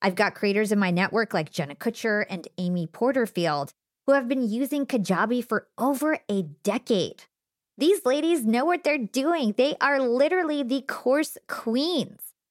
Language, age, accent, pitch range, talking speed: English, 20-39, American, 180-240 Hz, 160 wpm